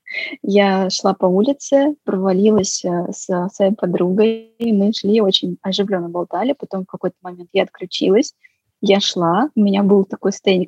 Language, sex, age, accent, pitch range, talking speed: Russian, female, 20-39, native, 195-250 Hz, 150 wpm